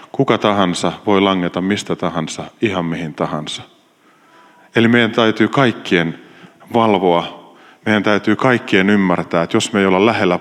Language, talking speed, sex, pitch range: Finnish, 140 wpm, male, 90-115 Hz